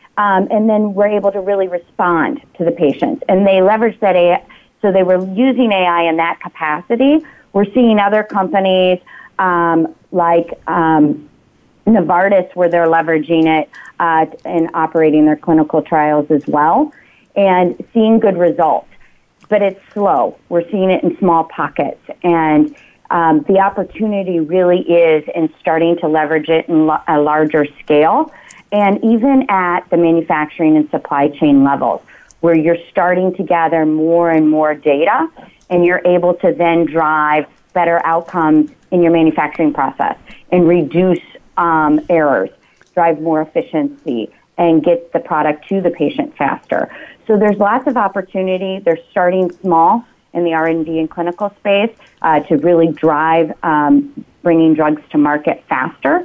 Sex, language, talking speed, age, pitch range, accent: female, English, 150 wpm, 30-49, 160-195 Hz, American